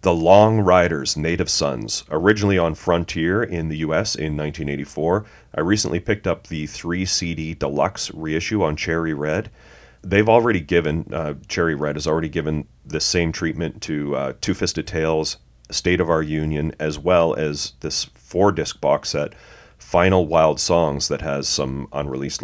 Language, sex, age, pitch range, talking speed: English, male, 30-49, 75-90 Hz, 160 wpm